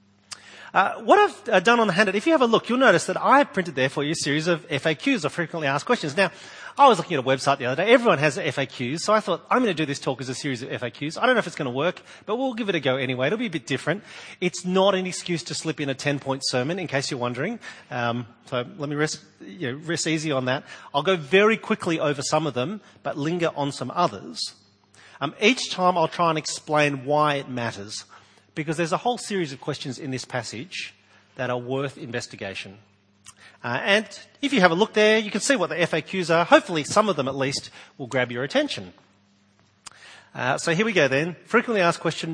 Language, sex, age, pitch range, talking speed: English, male, 40-59, 125-185 Hz, 240 wpm